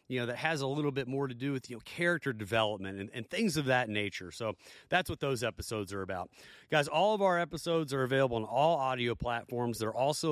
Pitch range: 115-150 Hz